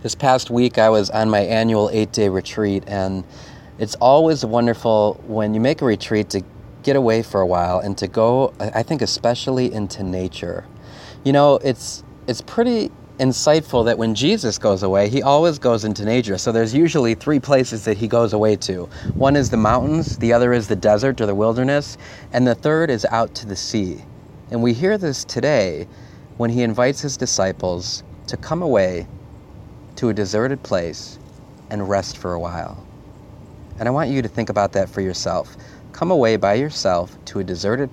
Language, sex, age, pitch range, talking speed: English, male, 30-49, 100-125 Hz, 185 wpm